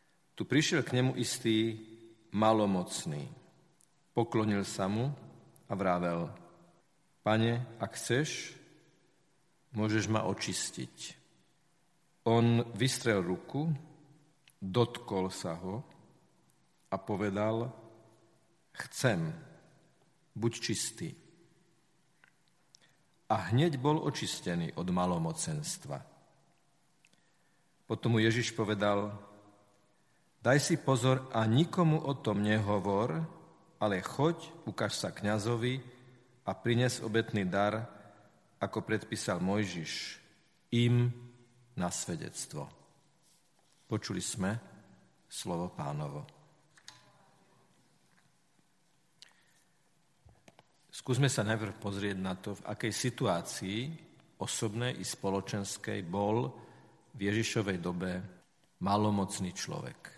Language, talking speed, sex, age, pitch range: Slovak, 80 wpm, male, 50-69, 105-160 Hz